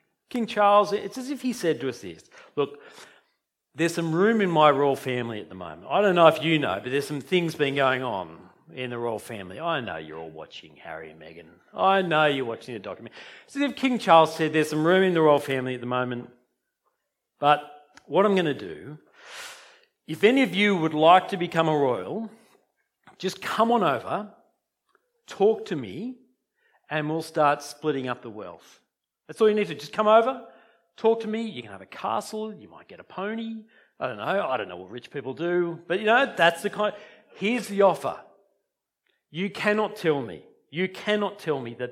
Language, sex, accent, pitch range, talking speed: English, male, Australian, 140-215 Hz, 210 wpm